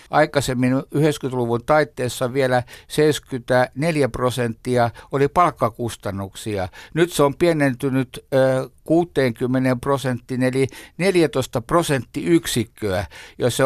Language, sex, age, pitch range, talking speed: Finnish, male, 60-79, 125-150 Hz, 80 wpm